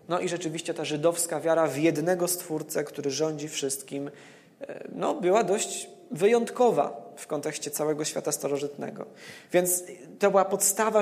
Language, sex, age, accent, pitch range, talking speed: Polish, male, 20-39, native, 145-180 Hz, 130 wpm